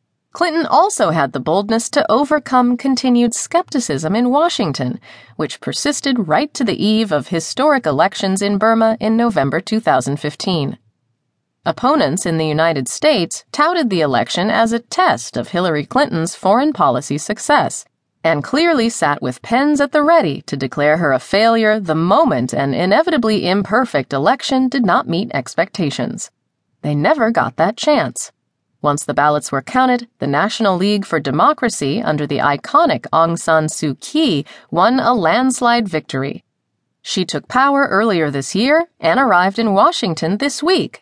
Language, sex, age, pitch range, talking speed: English, female, 30-49, 160-255 Hz, 150 wpm